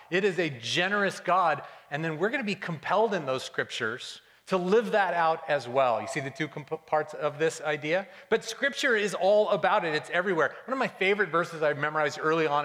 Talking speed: 225 wpm